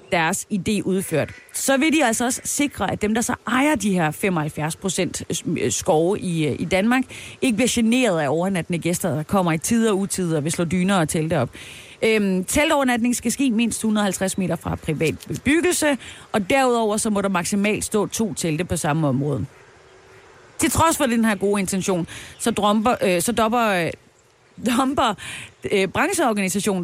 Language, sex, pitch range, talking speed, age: Danish, female, 175-240 Hz, 165 wpm, 30-49